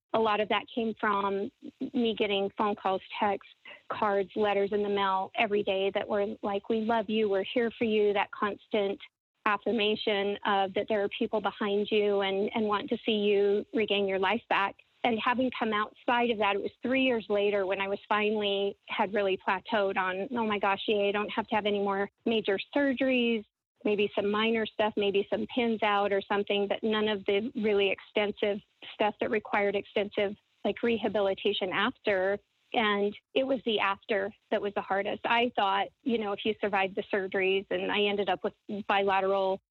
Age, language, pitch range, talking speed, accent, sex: 30-49, English, 200-220 Hz, 190 wpm, American, female